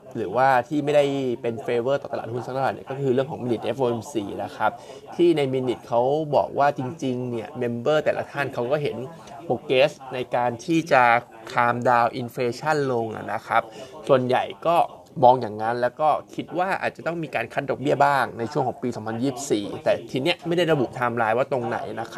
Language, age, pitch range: Thai, 20-39, 120-150 Hz